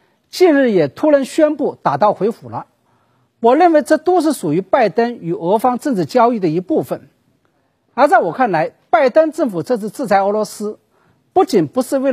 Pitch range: 215-310 Hz